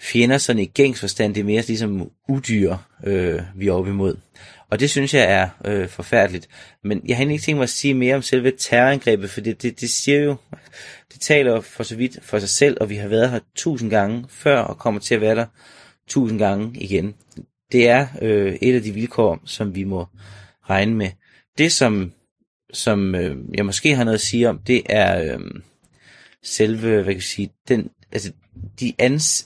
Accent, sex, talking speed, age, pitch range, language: native, male, 205 wpm, 30-49, 95-120 Hz, Danish